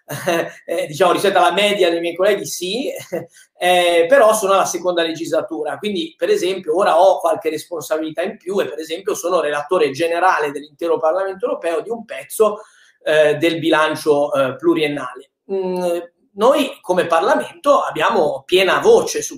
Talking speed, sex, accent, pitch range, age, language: 150 wpm, male, native, 165-215 Hz, 30-49, Italian